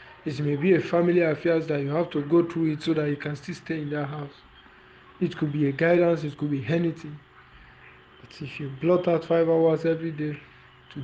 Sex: male